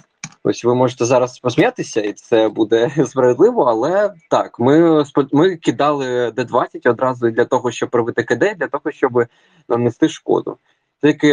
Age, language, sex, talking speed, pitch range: 20-39, Ukrainian, male, 145 wpm, 120-155 Hz